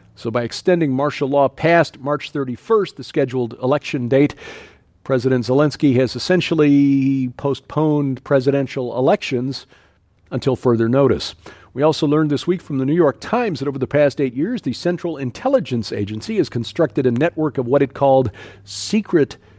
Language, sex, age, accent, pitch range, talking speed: English, male, 50-69, American, 120-150 Hz, 155 wpm